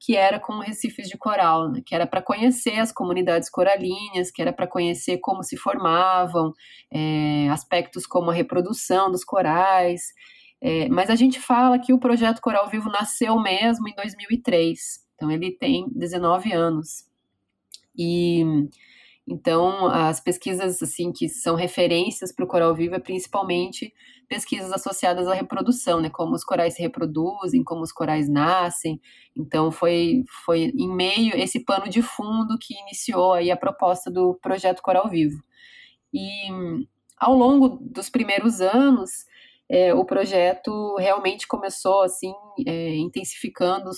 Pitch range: 175-235 Hz